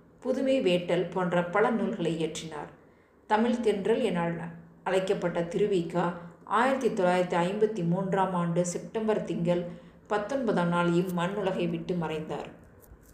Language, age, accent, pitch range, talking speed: Tamil, 20-39, native, 175-210 Hz, 95 wpm